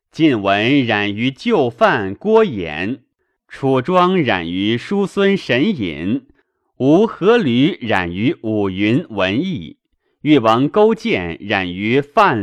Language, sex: Chinese, male